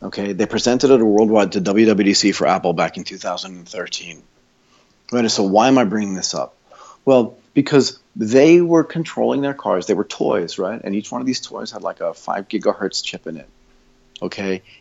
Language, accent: English, American